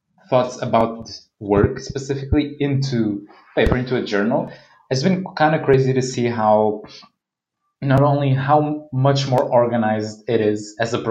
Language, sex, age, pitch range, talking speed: English, male, 20-39, 115-145 Hz, 135 wpm